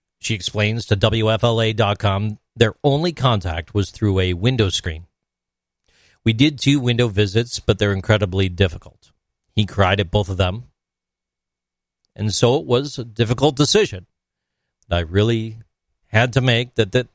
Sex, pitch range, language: male, 95-125 Hz, English